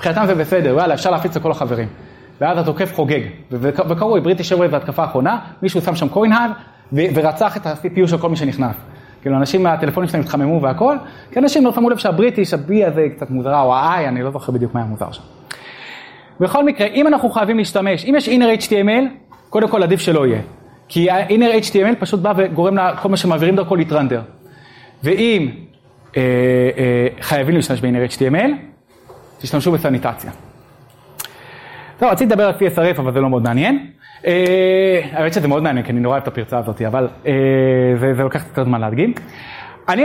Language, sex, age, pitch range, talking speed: Hebrew, male, 30-49, 135-205 Hz, 160 wpm